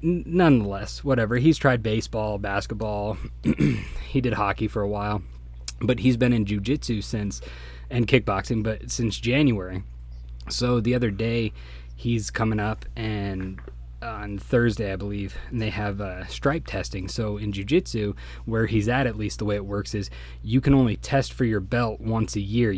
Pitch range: 100-120 Hz